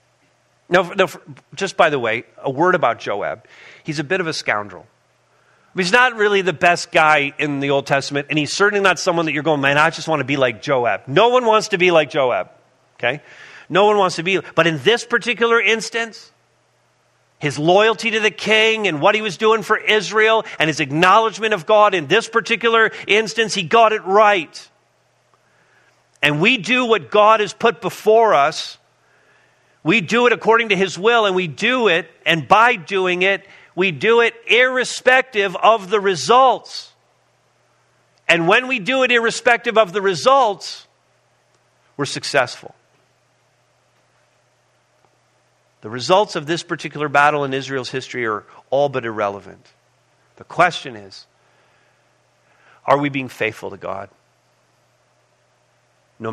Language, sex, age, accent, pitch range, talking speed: English, male, 40-59, American, 150-220 Hz, 160 wpm